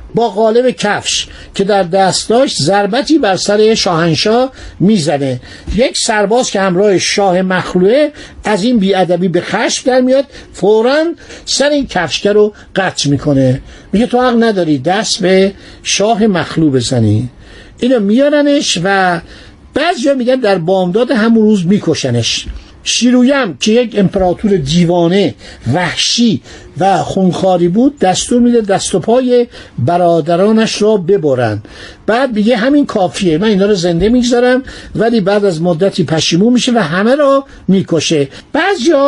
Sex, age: male, 60-79